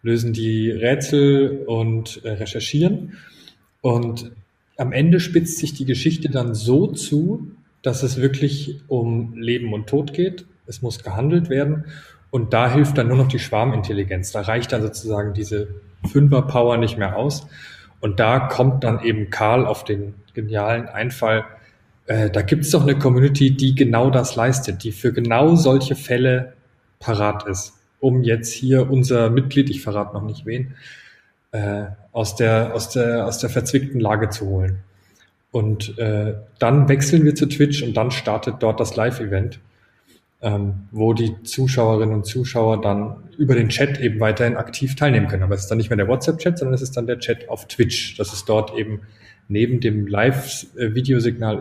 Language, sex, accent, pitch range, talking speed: German, male, German, 105-130 Hz, 165 wpm